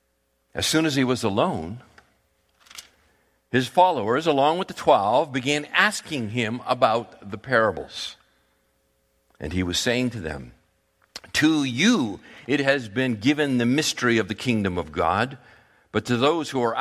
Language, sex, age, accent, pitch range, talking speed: English, male, 50-69, American, 105-140 Hz, 150 wpm